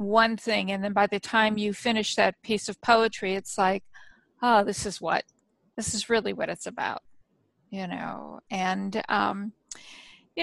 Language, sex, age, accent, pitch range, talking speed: English, female, 50-69, American, 195-240 Hz, 175 wpm